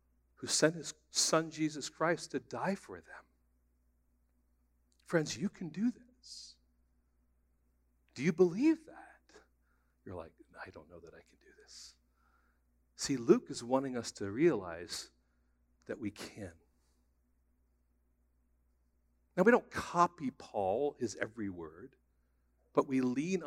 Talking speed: 130 wpm